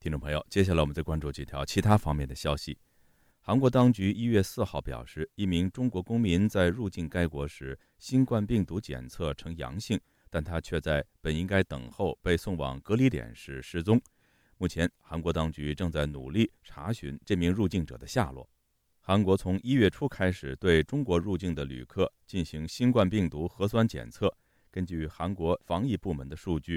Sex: male